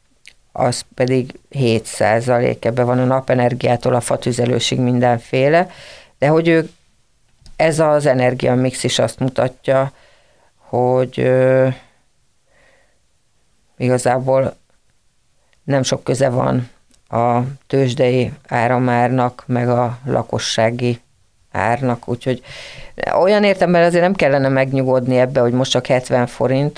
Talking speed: 105 wpm